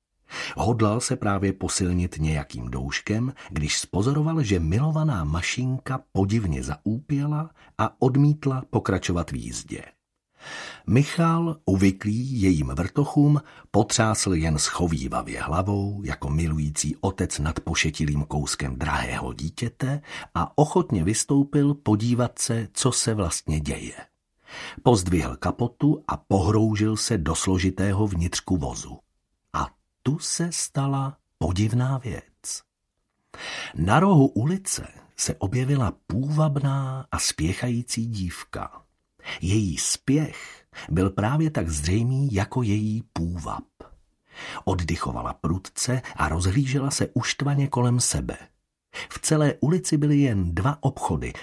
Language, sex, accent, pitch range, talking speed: Czech, male, native, 85-135 Hz, 105 wpm